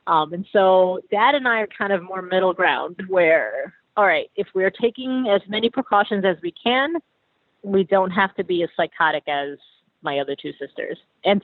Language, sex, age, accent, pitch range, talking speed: English, female, 40-59, American, 160-210 Hz, 195 wpm